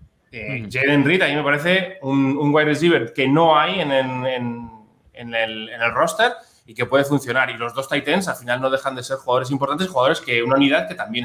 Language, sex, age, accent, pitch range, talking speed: Spanish, male, 20-39, Spanish, 120-155 Hz, 235 wpm